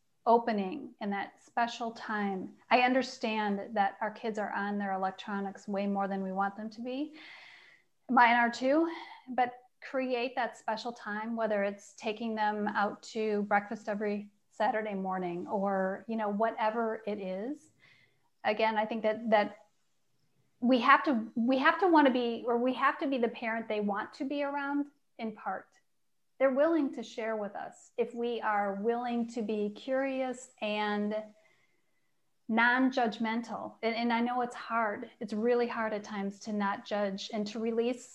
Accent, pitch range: American, 210-245 Hz